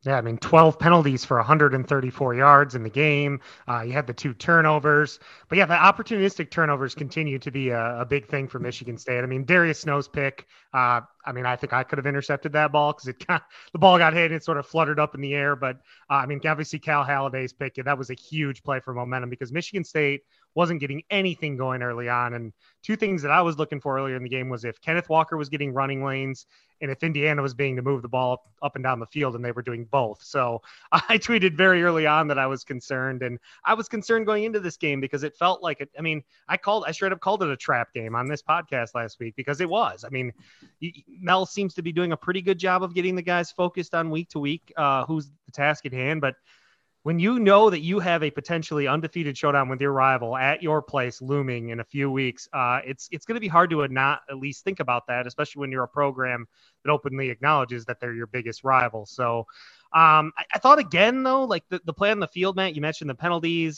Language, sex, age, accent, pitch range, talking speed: English, male, 30-49, American, 130-165 Hz, 250 wpm